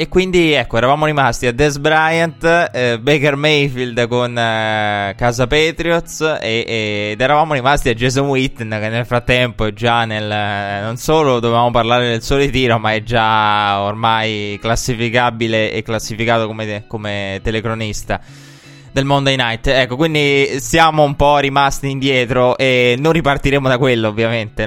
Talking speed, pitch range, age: 145 wpm, 115-140 Hz, 20-39